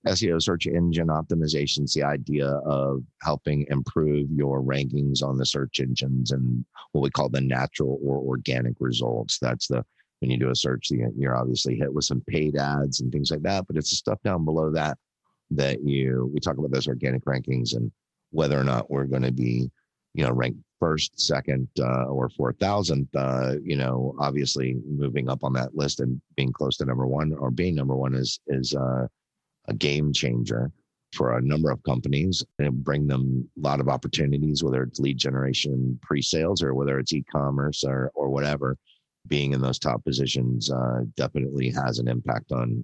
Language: English